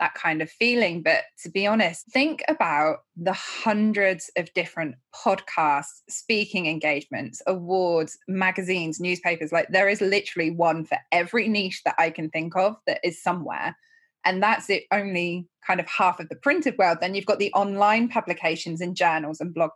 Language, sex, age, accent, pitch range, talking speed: English, female, 20-39, British, 170-220 Hz, 175 wpm